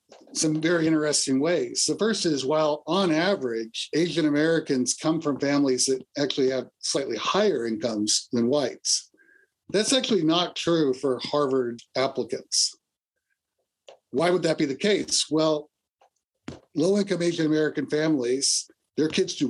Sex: male